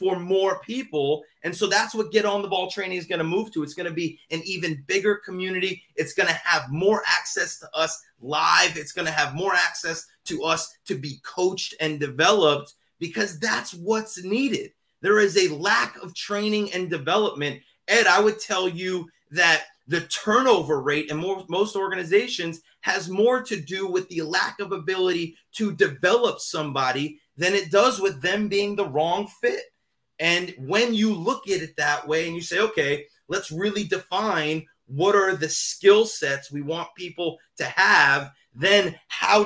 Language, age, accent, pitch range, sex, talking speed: English, 30-49, American, 165-225 Hz, male, 180 wpm